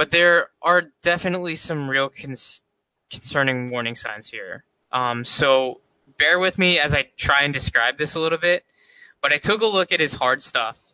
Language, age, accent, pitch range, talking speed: English, 20-39, American, 130-165 Hz, 180 wpm